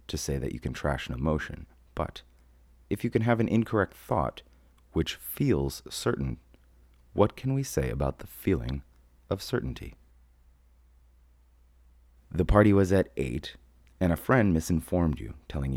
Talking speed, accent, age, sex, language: 150 wpm, American, 30-49, male, English